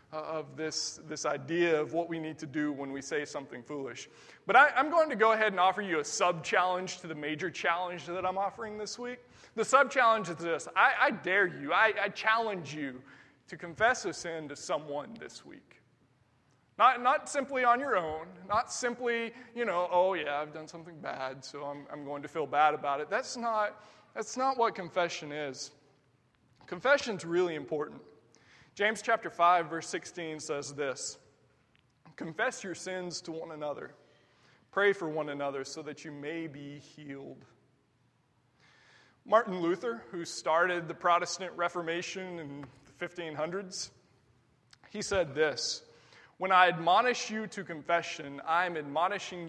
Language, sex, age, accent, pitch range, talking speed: English, male, 20-39, American, 145-200 Hz, 165 wpm